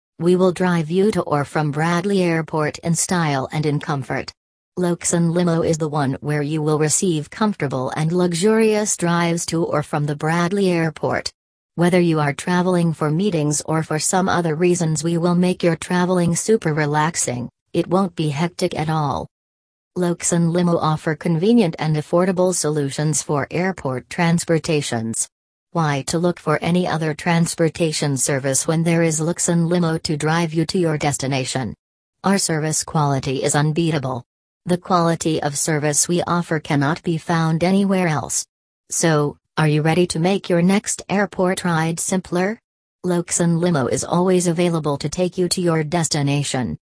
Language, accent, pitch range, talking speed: English, American, 150-175 Hz, 160 wpm